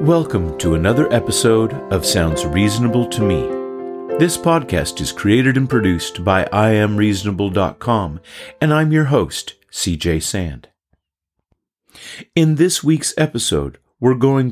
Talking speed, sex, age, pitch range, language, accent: 120 wpm, male, 50-69, 85-125 Hz, English, American